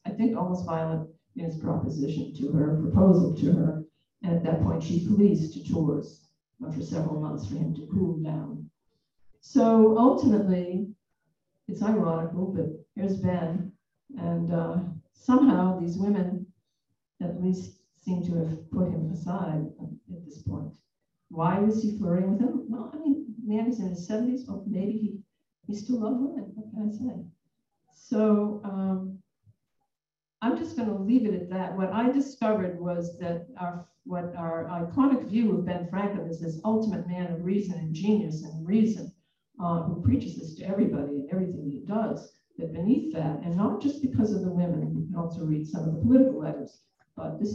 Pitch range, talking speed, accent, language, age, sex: 165-215 Hz, 175 wpm, American, English, 50-69, female